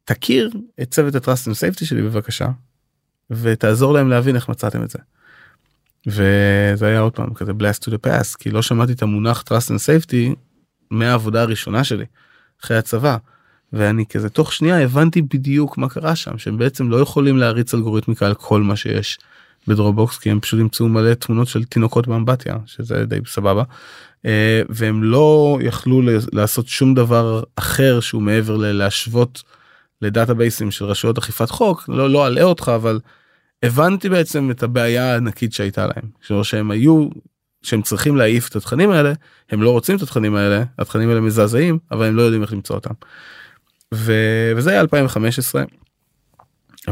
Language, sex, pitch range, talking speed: Hebrew, male, 105-130 Hz, 165 wpm